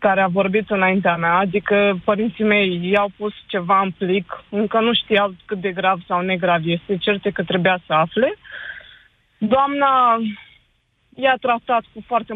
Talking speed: 155 wpm